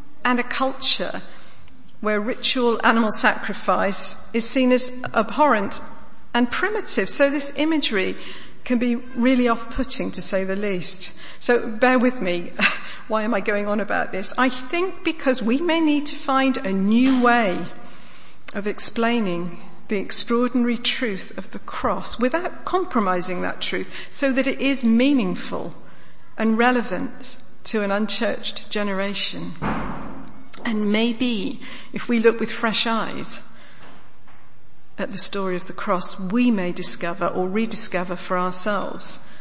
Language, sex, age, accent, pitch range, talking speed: English, female, 50-69, British, 190-245 Hz, 135 wpm